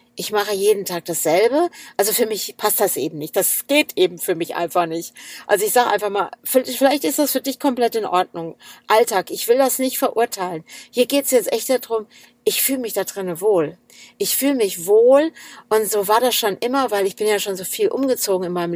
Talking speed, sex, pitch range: 225 wpm, female, 180-240 Hz